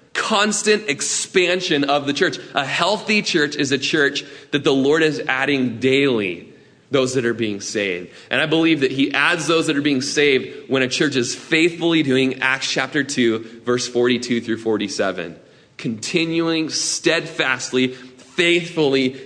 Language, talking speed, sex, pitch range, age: English, 155 wpm, male, 130-170 Hz, 20-39